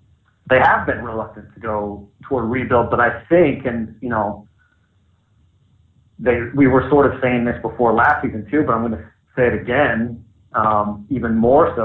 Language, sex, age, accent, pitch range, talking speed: English, male, 30-49, American, 105-130 Hz, 185 wpm